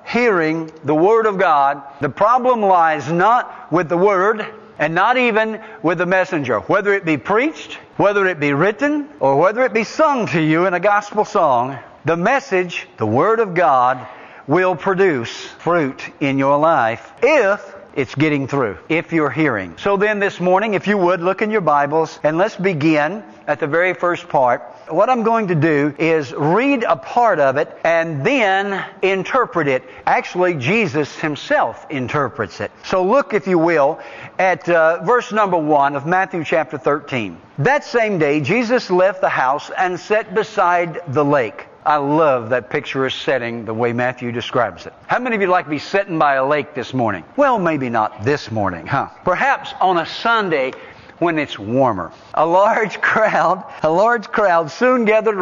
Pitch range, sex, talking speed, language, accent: 150-210 Hz, male, 180 wpm, English, American